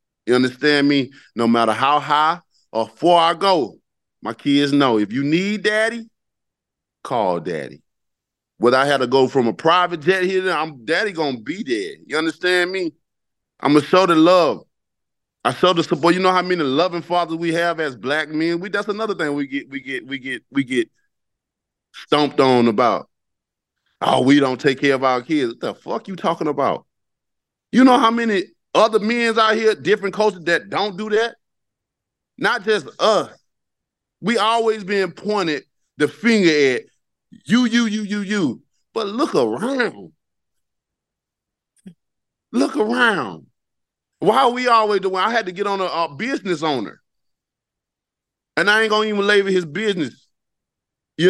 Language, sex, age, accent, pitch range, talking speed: English, male, 20-39, American, 150-210 Hz, 170 wpm